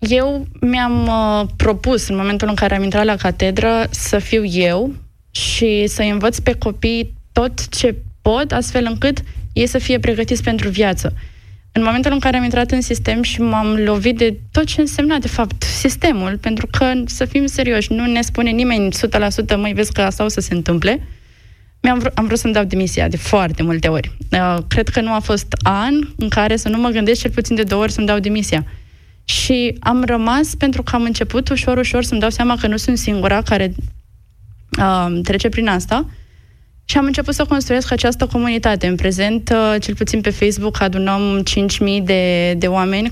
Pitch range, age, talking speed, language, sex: 195-240 Hz, 20-39, 195 wpm, Romanian, female